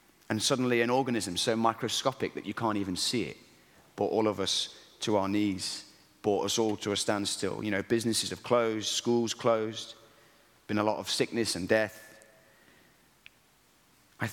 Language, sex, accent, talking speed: English, male, British, 170 wpm